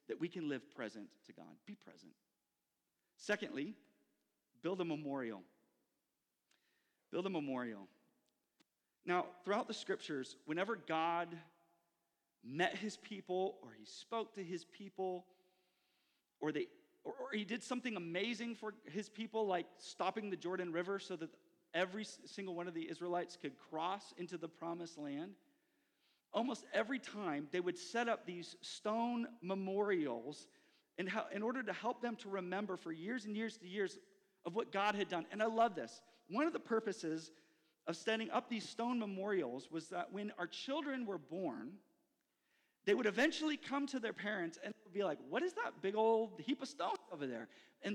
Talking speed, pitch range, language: 165 wpm, 170-225 Hz, English